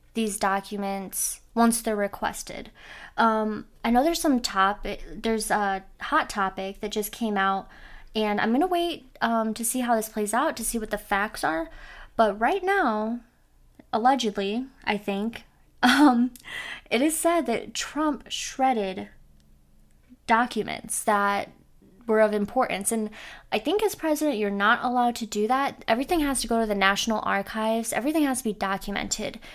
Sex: female